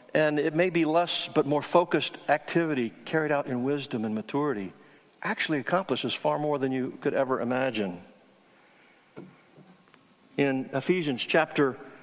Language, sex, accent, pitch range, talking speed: English, male, American, 150-205 Hz, 135 wpm